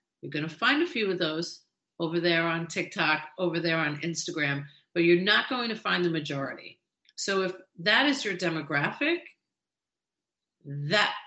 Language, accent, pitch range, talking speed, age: English, American, 160-190 Hz, 165 wpm, 50-69